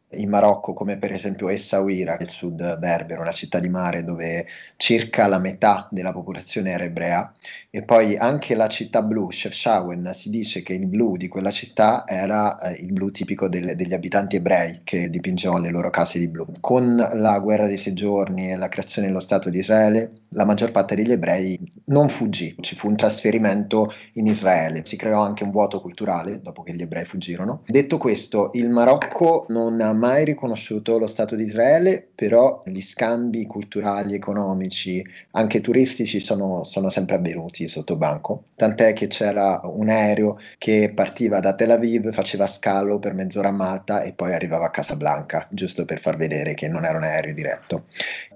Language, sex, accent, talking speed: Italian, male, native, 180 wpm